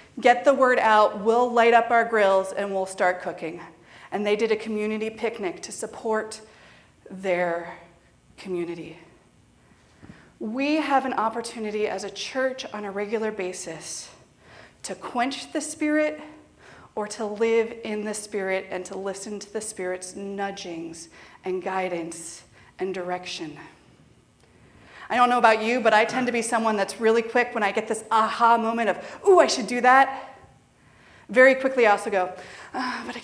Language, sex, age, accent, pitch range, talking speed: English, female, 30-49, American, 200-265 Hz, 160 wpm